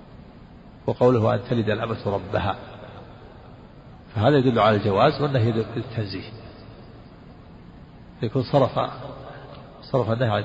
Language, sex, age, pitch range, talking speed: Arabic, male, 50-69, 110-135 Hz, 90 wpm